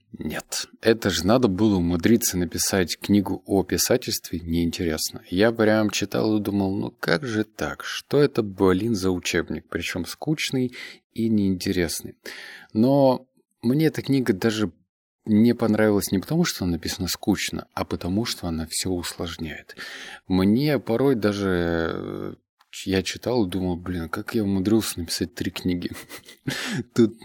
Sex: male